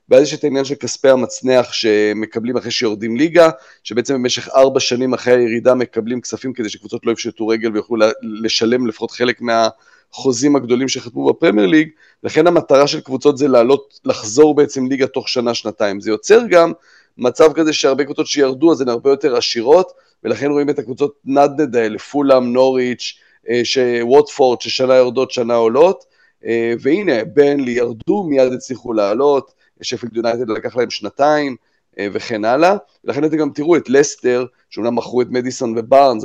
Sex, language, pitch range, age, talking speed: male, Hebrew, 115-145 Hz, 30-49, 150 wpm